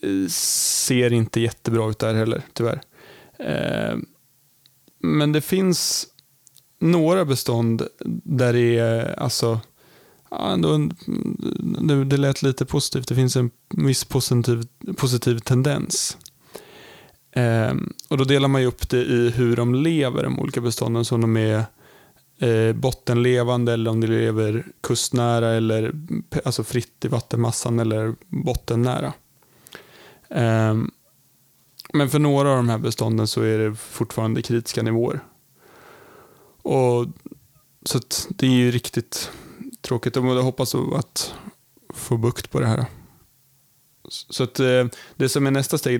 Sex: male